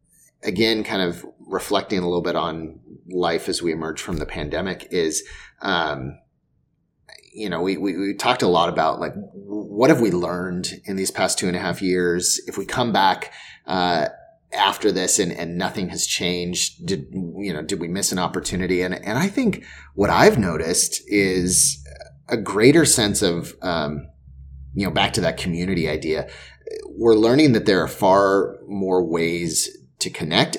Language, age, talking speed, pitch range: English, 30-49, 175 wpm, 85-115 Hz